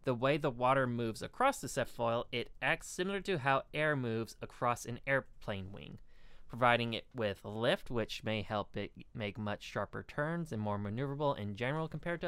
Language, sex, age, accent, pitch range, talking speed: English, male, 20-39, American, 110-145 Hz, 190 wpm